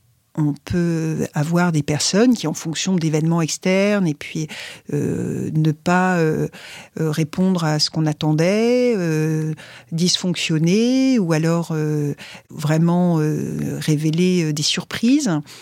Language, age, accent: French, 50-69, French